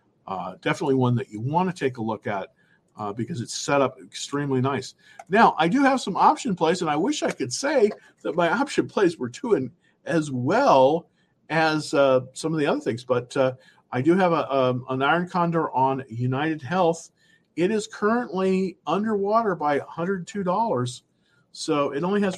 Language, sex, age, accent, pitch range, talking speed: English, male, 50-69, American, 125-170 Hz, 185 wpm